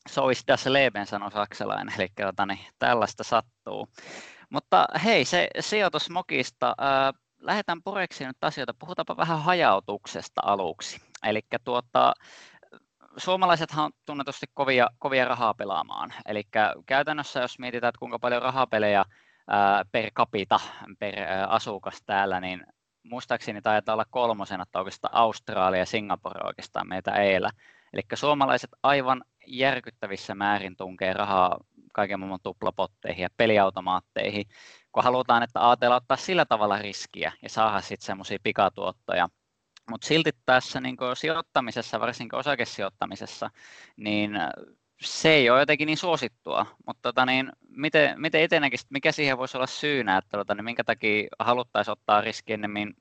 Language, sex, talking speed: Finnish, male, 135 wpm